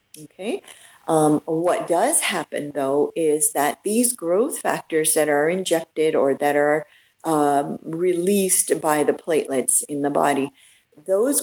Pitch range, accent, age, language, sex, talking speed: 150-200 Hz, American, 50-69, English, female, 135 wpm